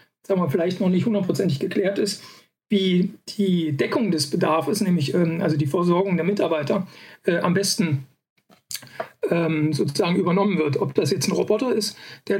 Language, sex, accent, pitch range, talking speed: German, male, German, 160-200 Hz, 170 wpm